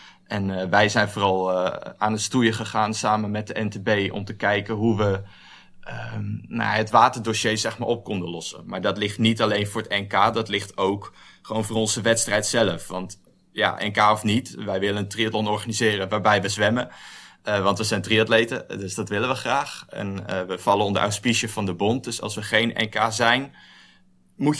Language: Dutch